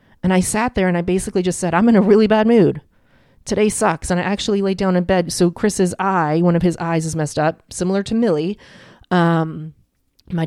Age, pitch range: 30-49, 165-215 Hz